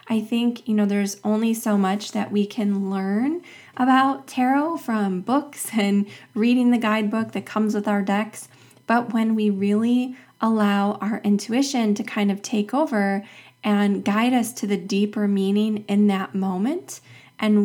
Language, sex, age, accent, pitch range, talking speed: English, female, 20-39, American, 200-235 Hz, 165 wpm